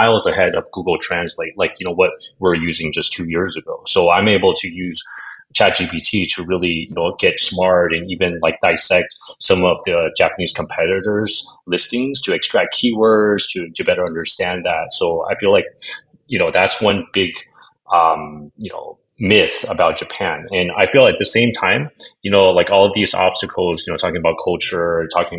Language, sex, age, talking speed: English, male, 30-49, 190 wpm